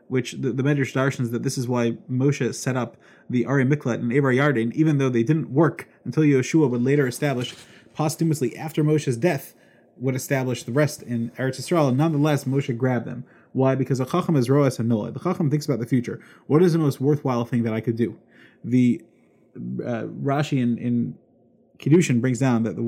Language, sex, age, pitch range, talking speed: English, male, 30-49, 125-155 Hz, 205 wpm